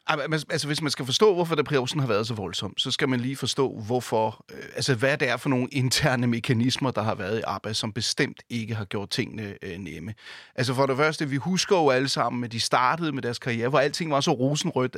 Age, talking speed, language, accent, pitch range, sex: 30-49, 230 wpm, Danish, native, 110-145 Hz, male